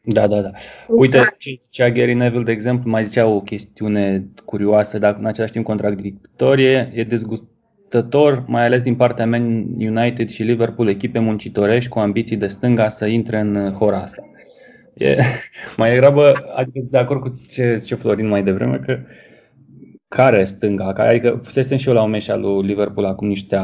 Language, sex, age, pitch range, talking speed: Romanian, male, 20-39, 100-125 Hz, 170 wpm